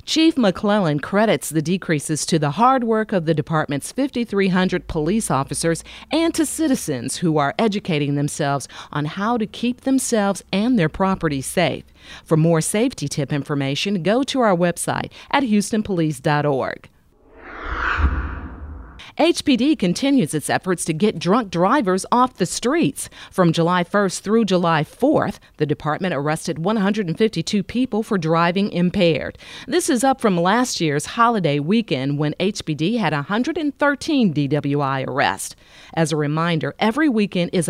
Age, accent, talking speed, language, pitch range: 40-59, American, 140 wpm, English, 155-225 Hz